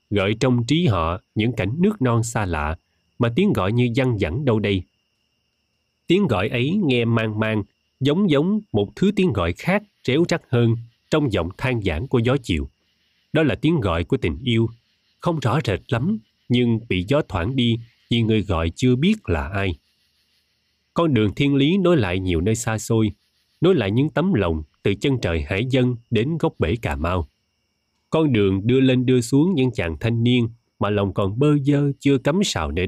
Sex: male